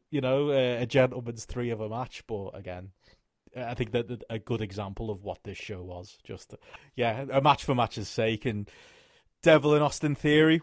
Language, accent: English, British